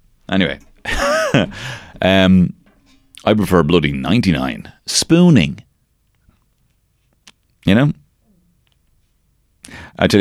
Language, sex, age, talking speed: English, male, 30-49, 70 wpm